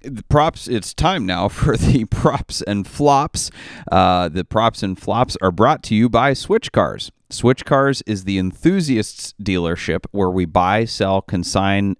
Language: English